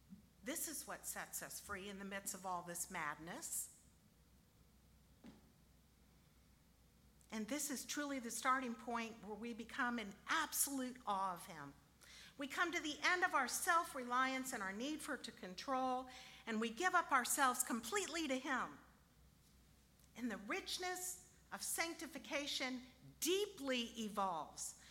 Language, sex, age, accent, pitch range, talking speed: English, female, 50-69, American, 230-310 Hz, 140 wpm